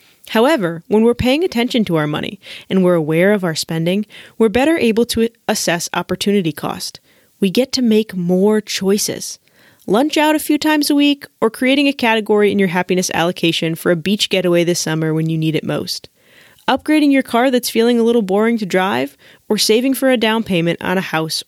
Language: English